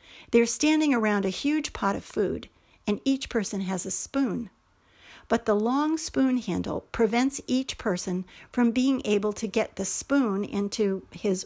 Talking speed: 160 wpm